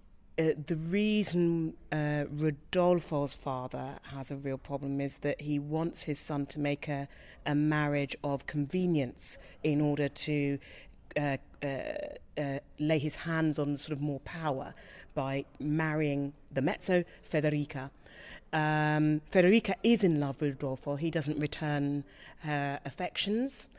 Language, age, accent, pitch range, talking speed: English, 40-59, British, 140-165 Hz, 135 wpm